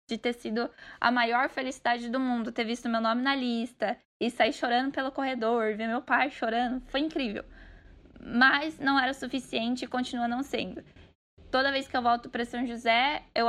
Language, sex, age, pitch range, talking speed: Portuguese, female, 10-29, 220-255 Hz, 190 wpm